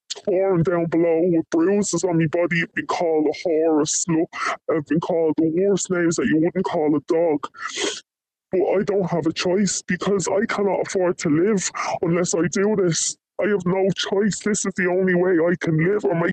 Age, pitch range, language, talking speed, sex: 10-29, 175-210 Hz, English, 210 wpm, female